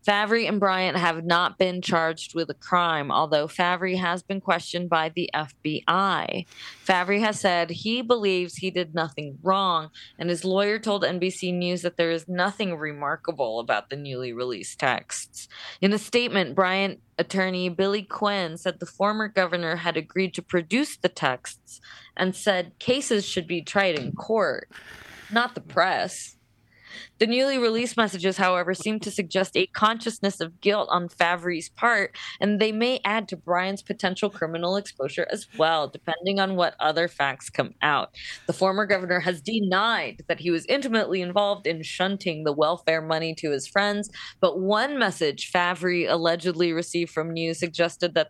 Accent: American